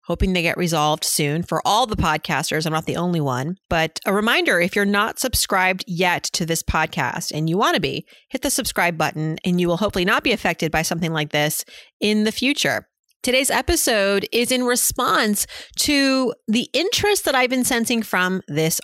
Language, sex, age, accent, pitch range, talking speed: English, female, 30-49, American, 170-225 Hz, 195 wpm